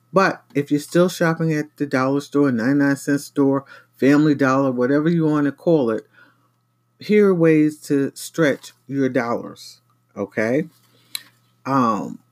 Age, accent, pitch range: 50-69, American, 135-180 Hz